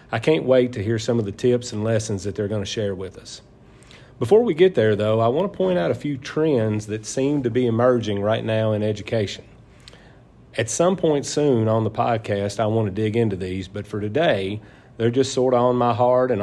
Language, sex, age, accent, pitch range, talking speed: English, male, 40-59, American, 105-125 Hz, 220 wpm